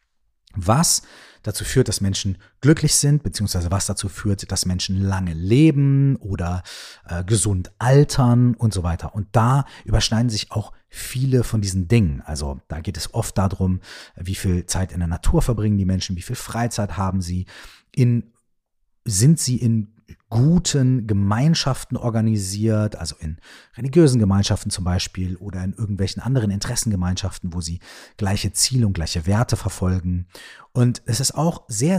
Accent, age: German, 40-59